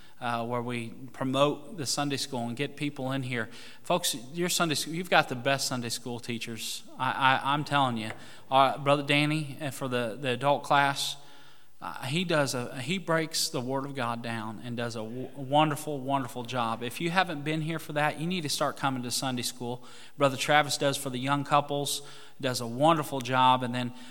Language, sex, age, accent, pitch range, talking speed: English, male, 30-49, American, 120-145 Hz, 200 wpm